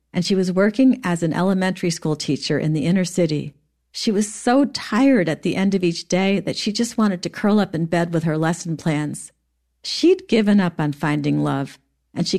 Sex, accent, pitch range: female, American, 155-215 Hz